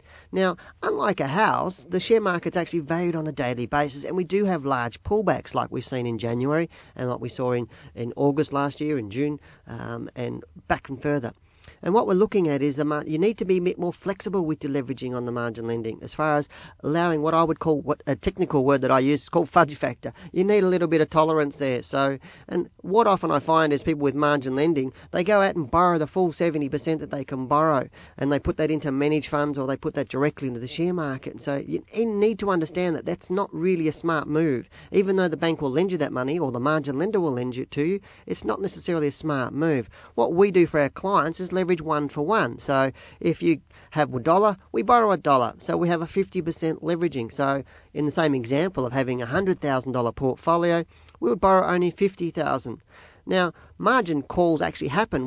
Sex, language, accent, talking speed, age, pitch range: male, English, Australian, 235 wpm, 40-59, 135-175 Hz